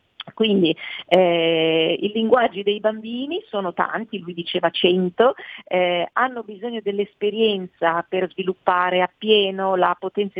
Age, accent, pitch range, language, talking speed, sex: 40-59, native, 175-215 Hz, Italian, 115 wpm, female